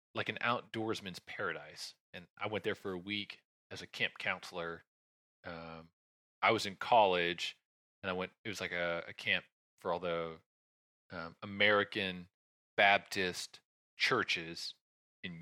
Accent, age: American, 30-49